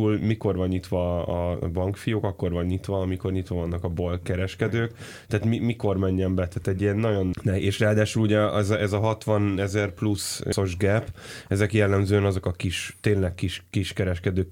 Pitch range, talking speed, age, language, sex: 90-105 Hz, 185 wpm, 10-29, Hungarian, male